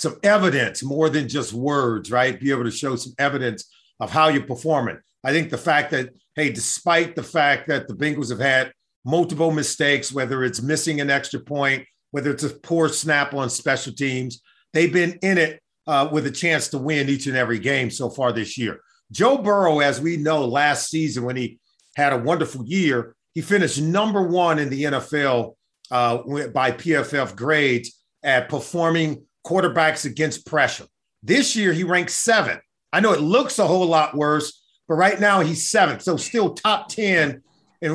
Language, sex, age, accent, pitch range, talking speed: English, male, 50-69, American, 140-180 Hz, 185 wpm